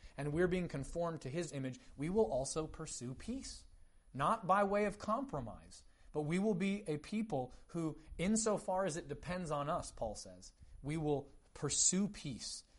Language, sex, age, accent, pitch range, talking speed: English, male, 30-49, American, 125-175 Hz, 170 wpm